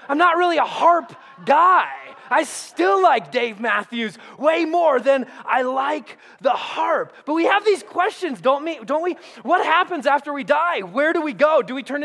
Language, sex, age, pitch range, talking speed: English, male, 20-39, 240-330 Hz, 185 wpm